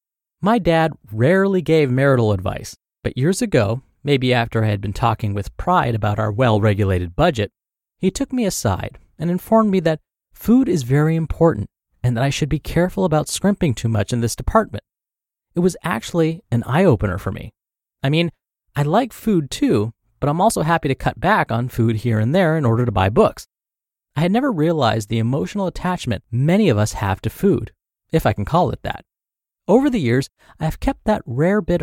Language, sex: English, male